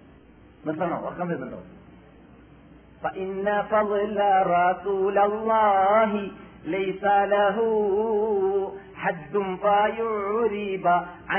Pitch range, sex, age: 165-215 Hz, male, 40-59